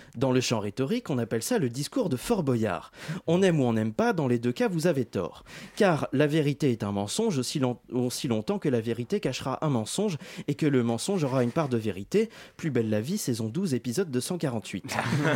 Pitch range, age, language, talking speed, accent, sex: 120-190 Hz, 30-49, French, 225 wpm, French, male